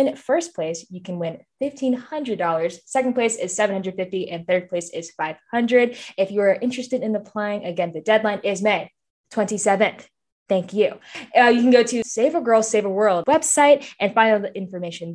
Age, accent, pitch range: 10-29, American, 175-230 Hz